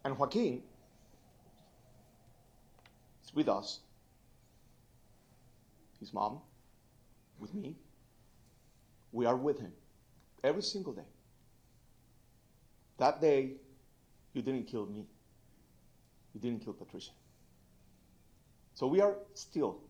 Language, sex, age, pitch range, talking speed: English, male, 40-59, 115-130 Hz, 90 wpm